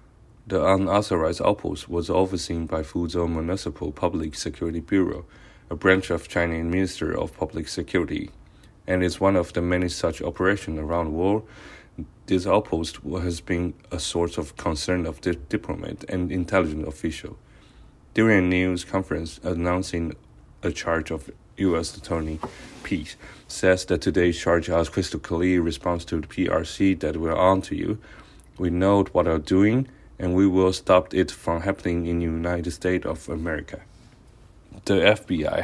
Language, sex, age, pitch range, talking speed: English, male, 30-49, 85-95 Hz, 155 wpm